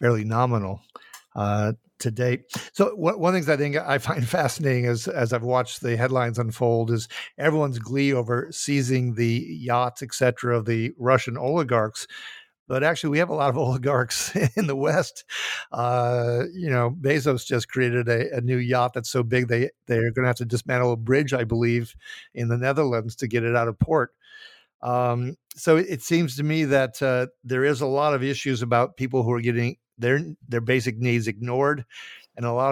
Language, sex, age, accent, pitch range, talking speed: English, male, 50-69, American, 120-140 Hz, 195 wpm